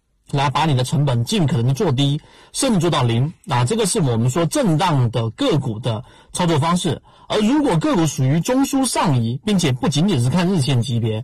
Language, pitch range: Chinese, 125-165 Hz